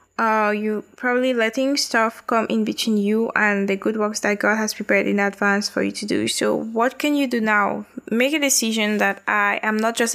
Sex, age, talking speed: female, 10-29, 220 wpm